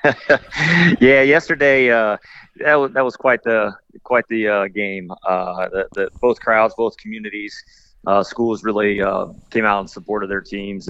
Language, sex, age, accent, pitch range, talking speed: English, male, 30-49, American, 100-110 Hz, 165 wpm